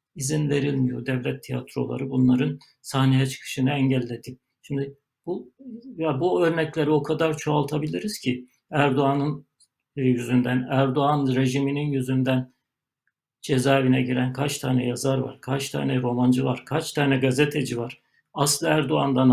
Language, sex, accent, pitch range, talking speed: Turkish, male, native, 130-145 Hz, 120 wpm